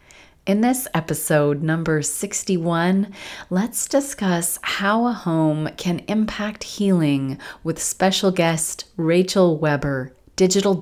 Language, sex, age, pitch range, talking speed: English, female, 30-49, 155-190 Hz, 105 wpm